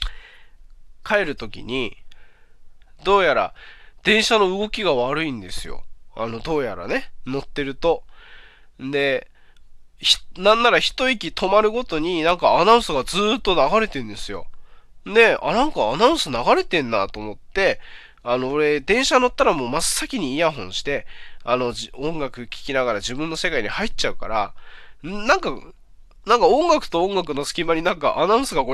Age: 20-39